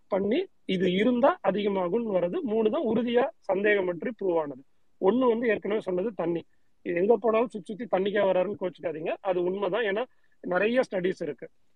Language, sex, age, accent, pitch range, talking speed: Tamil, male, 40-59, native, 180-225 Hz, 100 wpm